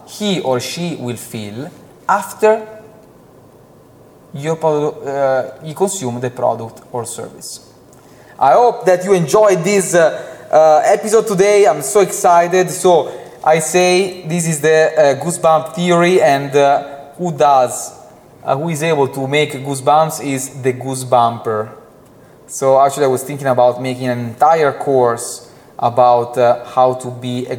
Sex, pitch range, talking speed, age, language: male, 145-195 Hz, 145 wpm, 20-39, English